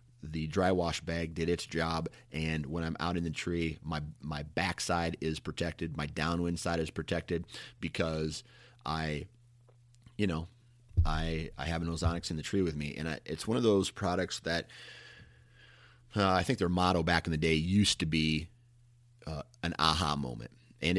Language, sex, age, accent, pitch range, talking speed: English, male, 30-49, American, 75-95 Hz, 180 wpm